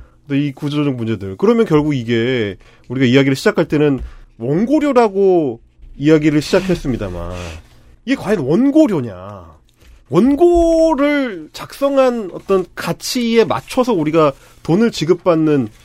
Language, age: Korean, 30-49